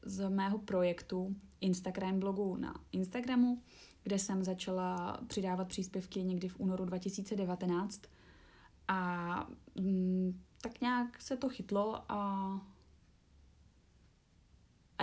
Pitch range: 180-205 Hz